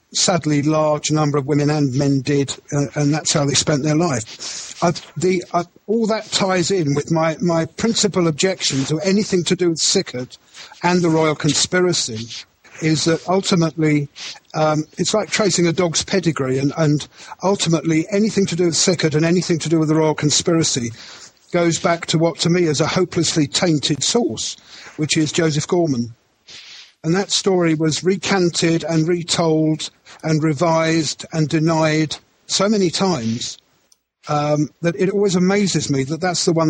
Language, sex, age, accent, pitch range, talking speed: English, male, 50-69, British, 150-175 Hz, 170 wpm